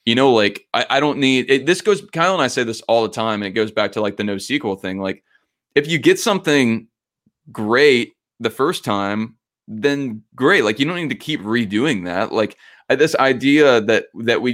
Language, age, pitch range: English, 20-39, 105-125 Hz